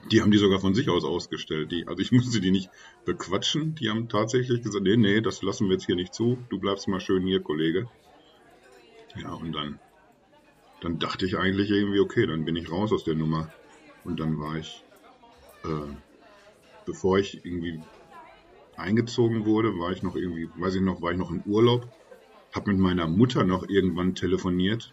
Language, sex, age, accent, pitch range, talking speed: German, male, 50-69, German, 90-110 Hz, 190 wpm